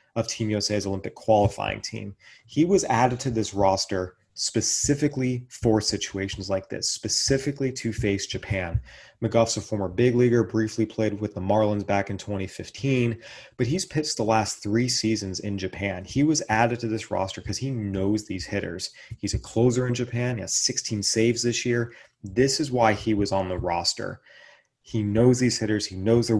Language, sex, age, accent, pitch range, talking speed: English, male, 30-49, American, 100-120 Hz, 180 wpm